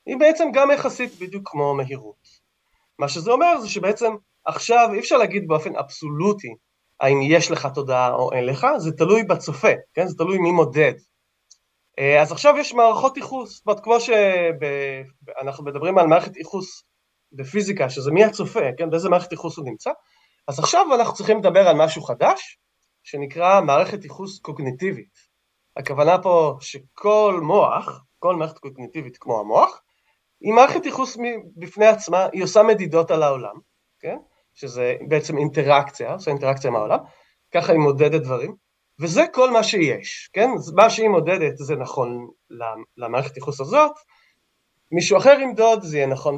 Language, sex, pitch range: Hebrew, male, 140-215 Hz